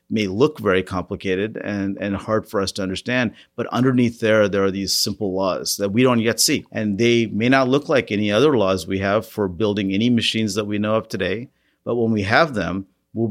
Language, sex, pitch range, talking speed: English, male, 95-110 Hz, 225 wpm